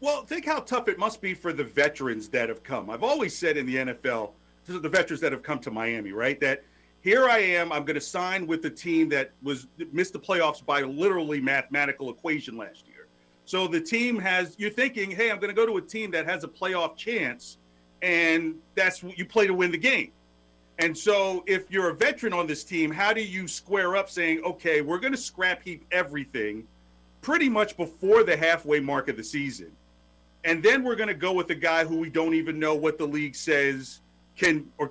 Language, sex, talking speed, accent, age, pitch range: English, male, 220 wpm, American, 40-59, 135-200 Hz